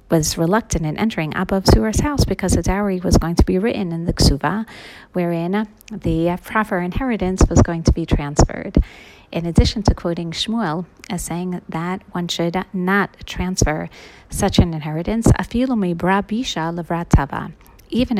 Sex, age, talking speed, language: female, 40-59, 140 wpm, English